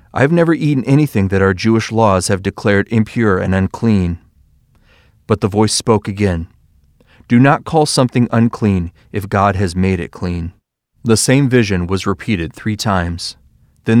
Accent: American